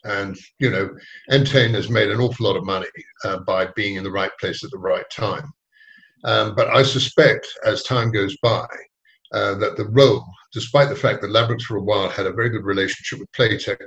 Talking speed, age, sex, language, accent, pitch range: 210 wpm, 50-69, male, English, British, 115-145 Hz